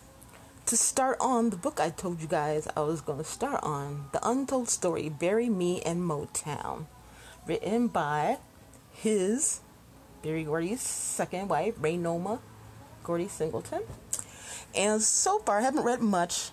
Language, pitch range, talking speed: English, 155-205 Hz, 145 wpm